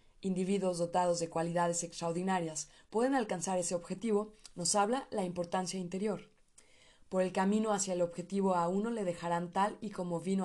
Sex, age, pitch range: female, 20-39, 175-205 Hz